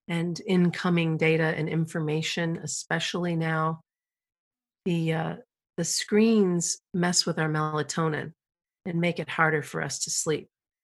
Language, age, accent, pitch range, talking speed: English, 50-69, American, 160-190 Hz, 125 wpm